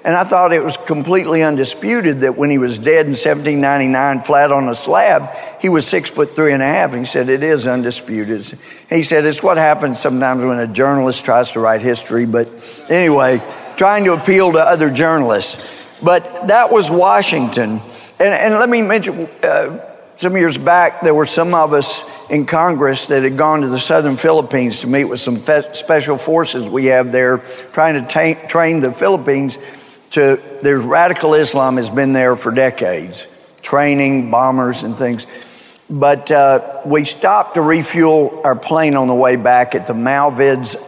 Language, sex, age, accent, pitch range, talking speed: English, male, 50-69, American, 125-155 Hz, 180 wpm